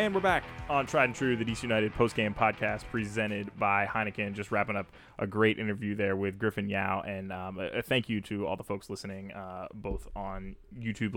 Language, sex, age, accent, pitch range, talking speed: English, male, 20-39, American, 95-120 Hz, 210 wpm